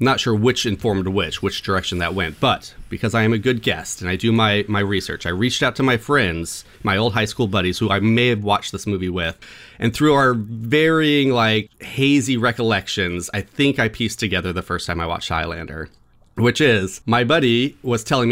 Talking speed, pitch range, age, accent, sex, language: 215 wpm, 100-135 Hz, 30-49, American, male, English